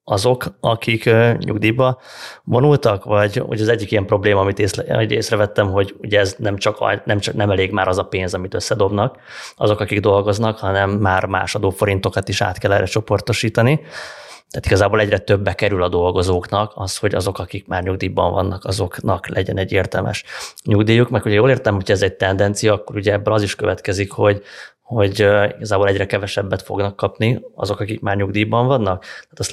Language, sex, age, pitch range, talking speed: Hungarian, male, 20-39, 100-115 Hz, 175 wpm